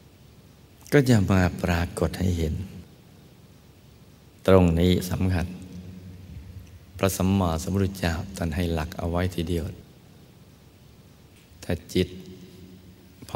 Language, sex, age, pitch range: Thai, male, 60-79, 85-95 Hz